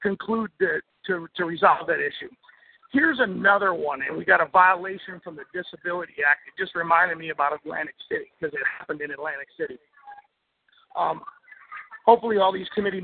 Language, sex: English, male